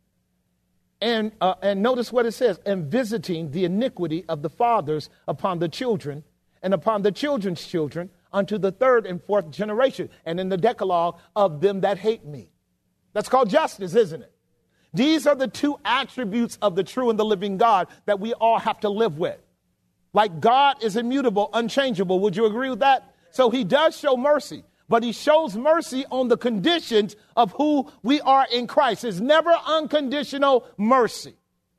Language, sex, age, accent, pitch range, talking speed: English, male, 40-59, American, 200-275 Hz, 175 wpm